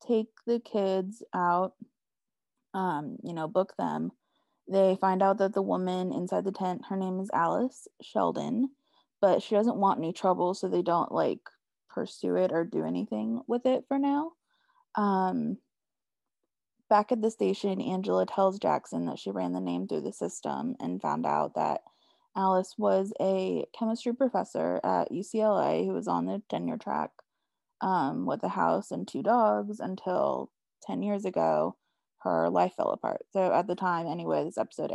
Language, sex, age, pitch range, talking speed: English, female, 20-39, 185-235 Hz, 165 wpm